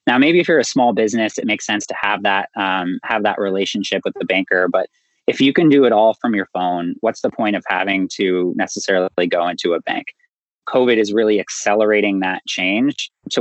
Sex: male